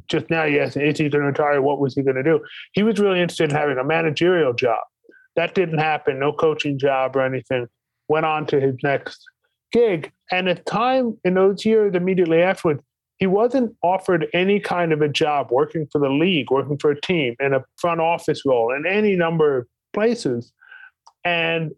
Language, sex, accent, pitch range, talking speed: English, male, American, 140-180 Hz, 200 wpm